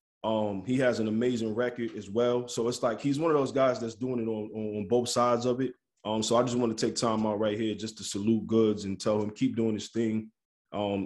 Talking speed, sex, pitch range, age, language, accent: 260 wpm, male, 105-125 Hz, 20-39, English, American